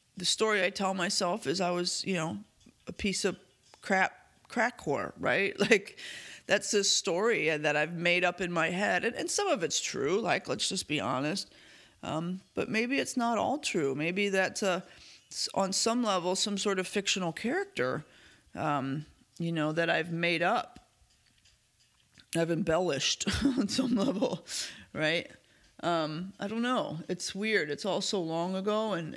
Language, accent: English, American